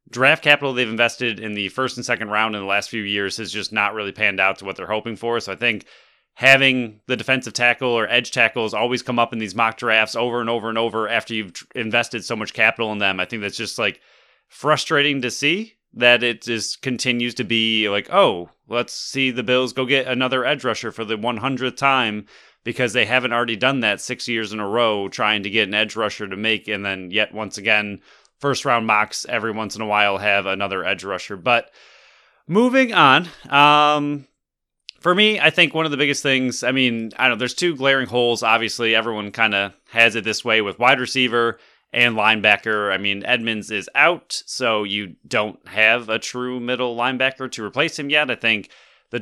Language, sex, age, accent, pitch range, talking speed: English, male, 30-49, American, 105-130 Hz, 215 wpm